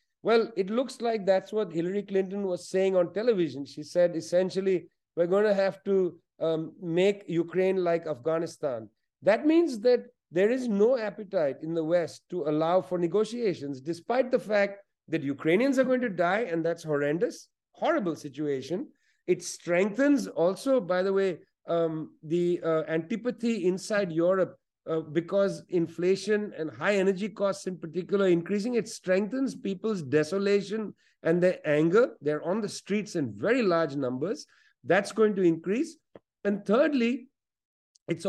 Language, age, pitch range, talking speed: English, 50-69, 165-210 Hz, 155 wpm